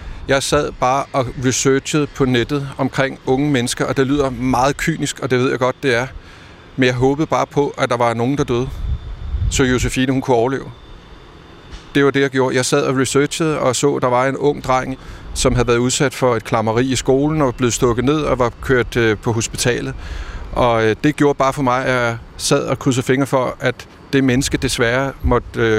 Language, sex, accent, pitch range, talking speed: Danish, male, native, 125-140 Hz, 210 wpm